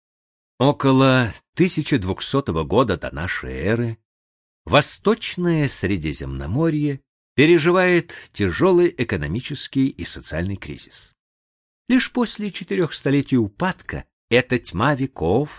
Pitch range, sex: 95-150 Hz, male